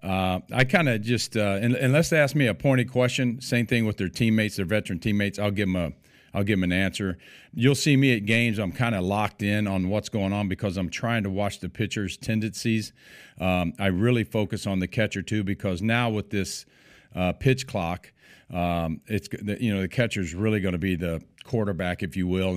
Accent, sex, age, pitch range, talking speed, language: American, male, 40-59, 90-110 Hz, 220 wpm, English